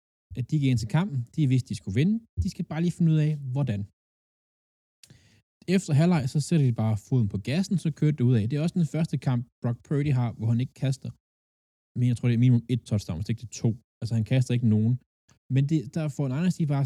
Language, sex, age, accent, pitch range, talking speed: Danish, male, 20-39, native, 105-140 Hz, 265 wpm